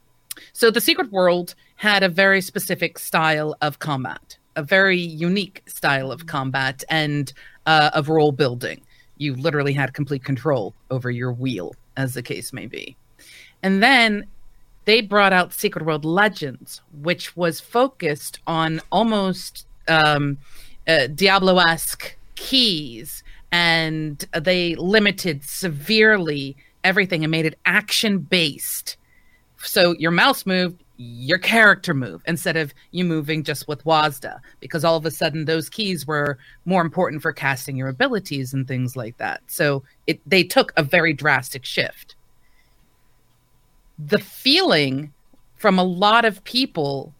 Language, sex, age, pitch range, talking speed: English, female, 40-59, 140-190 Hz, 135 wpm